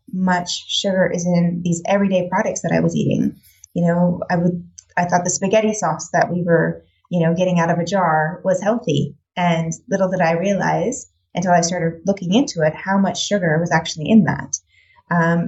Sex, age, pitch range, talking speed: female, 20-39, 170-200 Hz, 200 wpm